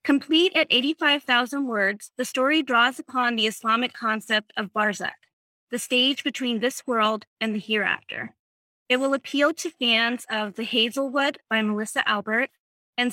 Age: 30-49